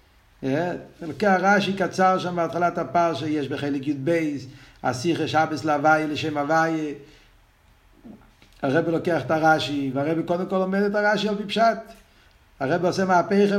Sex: male